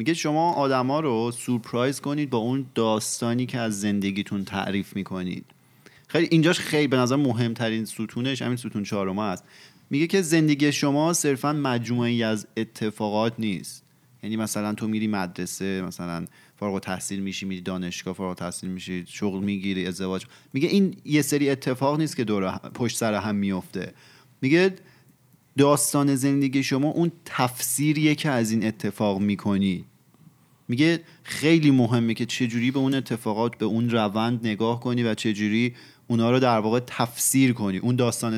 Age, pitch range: 30-49, 105-140 Hz